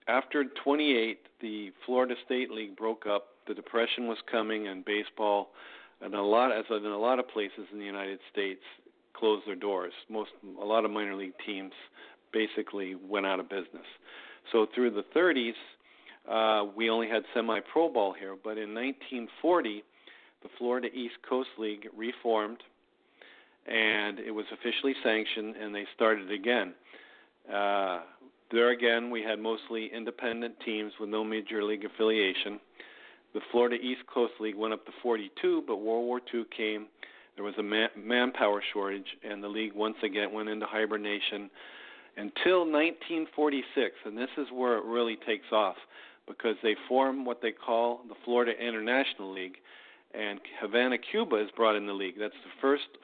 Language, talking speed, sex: English, 160 wpm, male